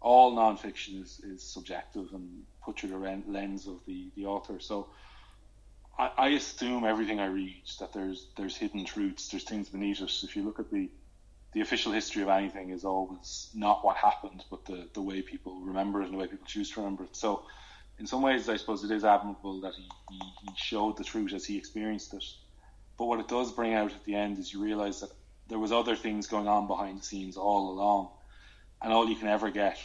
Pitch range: 95-110 Hz